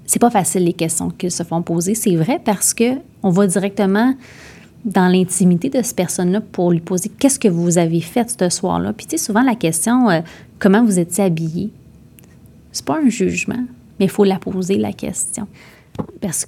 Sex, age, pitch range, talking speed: female, 30-49, 180-240 Hz, 195 wpm